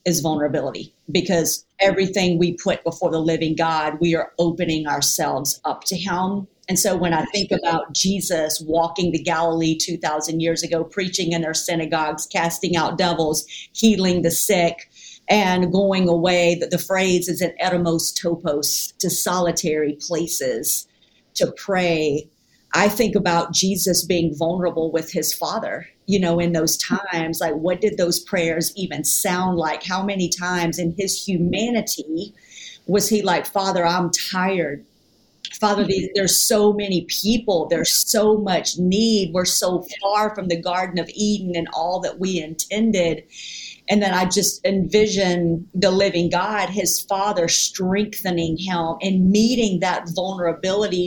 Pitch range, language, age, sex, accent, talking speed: 165-195 Hz, English, 50-69, female, American, 150 wpm